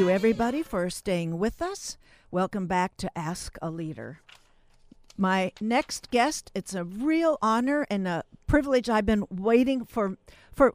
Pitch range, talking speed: 185-260 Hz, 155 wpm